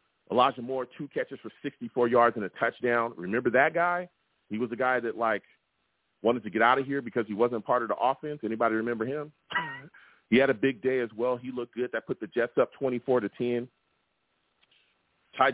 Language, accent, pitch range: English, American, 110-135 Hz